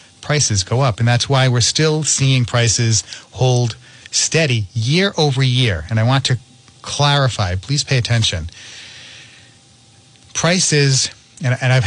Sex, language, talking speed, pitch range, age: male, English, 135 wpm, 110-130 Hz, 40-59